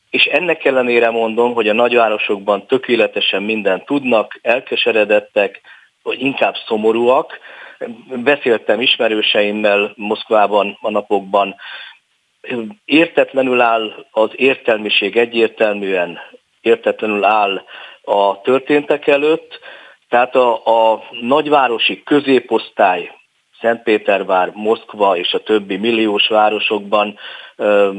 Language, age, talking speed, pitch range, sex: Hungarian, 50-69, 85 wpm, 110-125 Hz, male